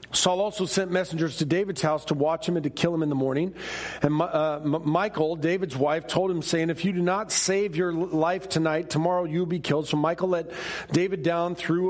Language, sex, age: English, male, 40-59